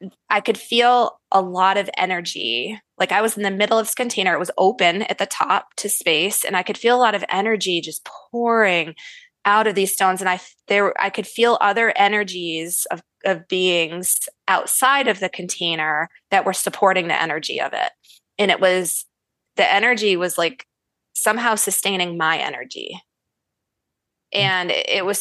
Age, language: 20-39, English